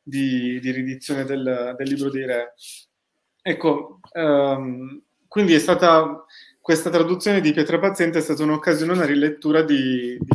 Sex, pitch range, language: male, 135-170 Hz, Italian